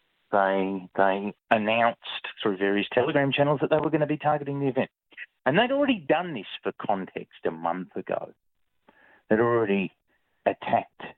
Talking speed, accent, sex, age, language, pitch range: 155 wpm, Australian, male, 30-49, English, 95-125 Hz